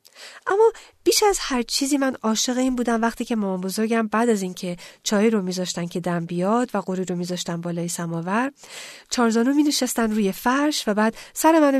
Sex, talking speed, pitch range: female, 190 wpm, 180-235 Hz